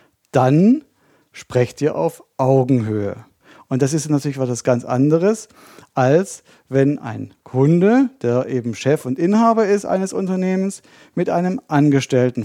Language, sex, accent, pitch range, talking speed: German, male, German, 130-165 Hz, 130 wpm